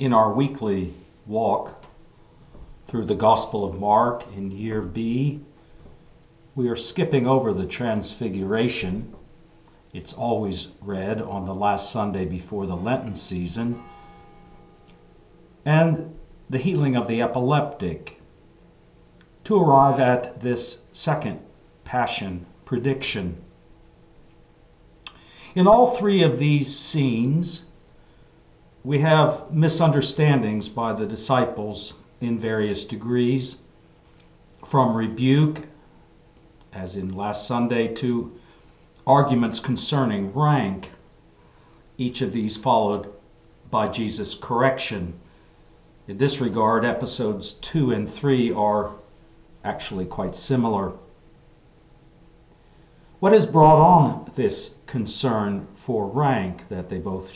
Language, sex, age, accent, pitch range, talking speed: English, male, 50-69, American, 105-145 Hz, 100 wpm